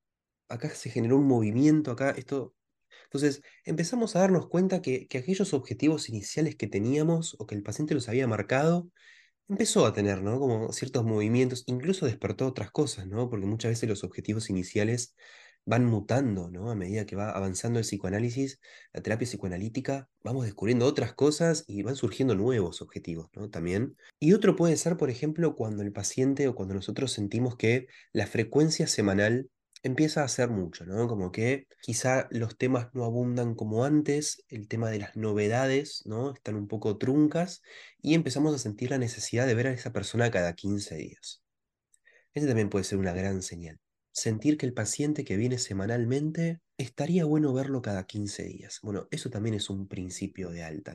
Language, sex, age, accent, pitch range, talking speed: Spanish, male, 20-39, Argentinian, 100-135 Hz, 180 wpm